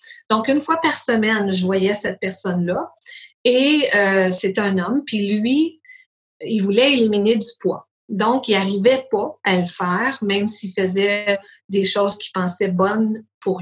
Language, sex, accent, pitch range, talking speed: French, female, Canadian, 195-260 Hz, 165 wpm